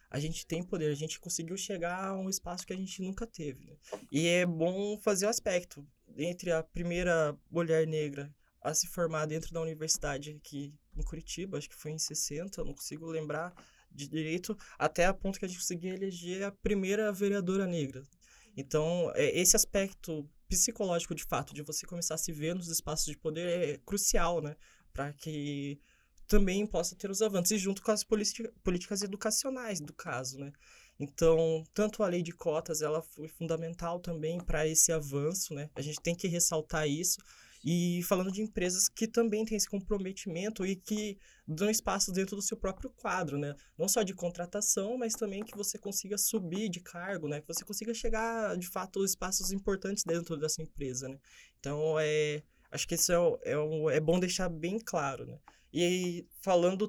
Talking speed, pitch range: 190 wpm, 160-195 Hz